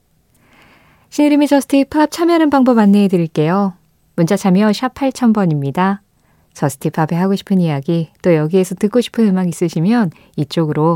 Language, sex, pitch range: Korean, female, 160-215 Hz